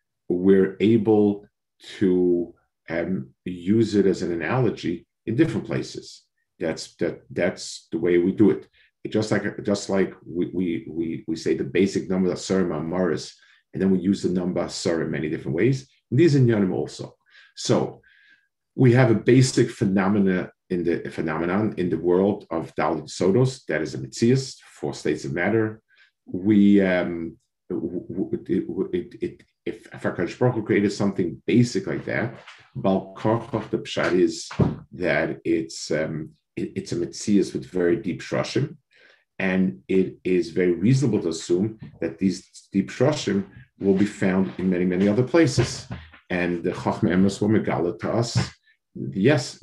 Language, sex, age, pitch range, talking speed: English, male, 50-69, 90-120 Hz, 150 wpm